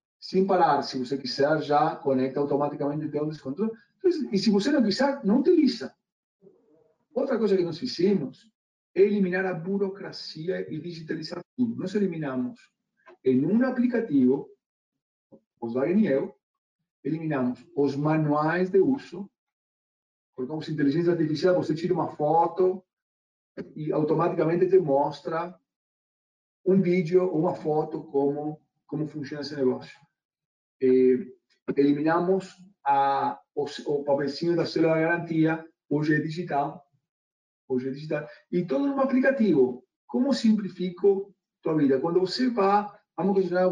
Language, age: Portuguese, 40-59